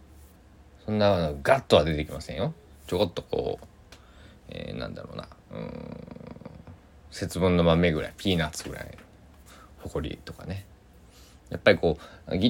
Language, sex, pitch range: Japanese, male, 80-105 Hz